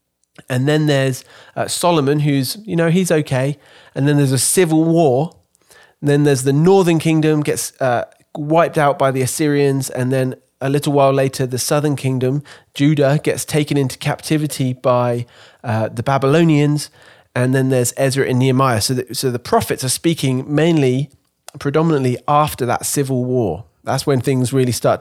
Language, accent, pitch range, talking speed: English, British, 125-150 Hz, 165 wpm